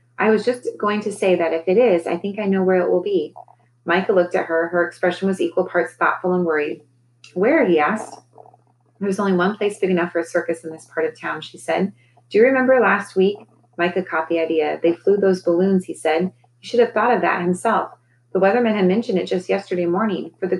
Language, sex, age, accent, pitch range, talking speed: English, female, 30-49, American, 165-200 Hz, 235 wpm